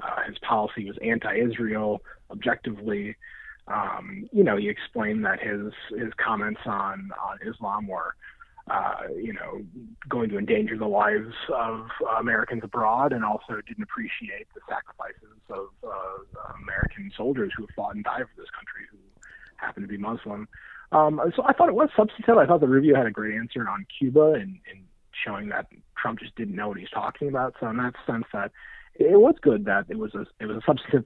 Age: 30-49